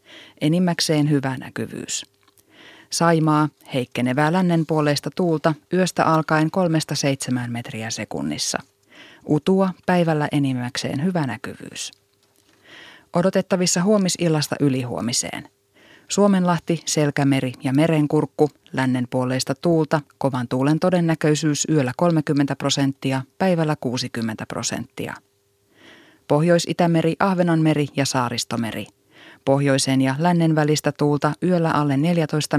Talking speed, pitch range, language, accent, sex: 85 wpm, 135-165 Hz, Finnish, native, female